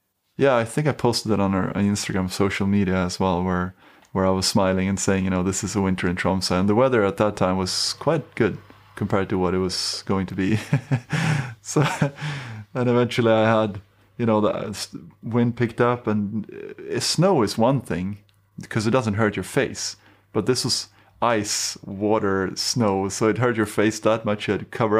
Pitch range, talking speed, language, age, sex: 100-120 Hz, 200 wpm, English, 30-49, male